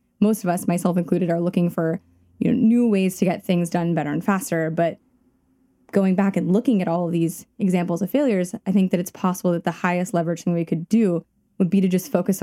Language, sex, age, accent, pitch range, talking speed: English, female, 10-29, American, 170-205 Hz, 225 wpm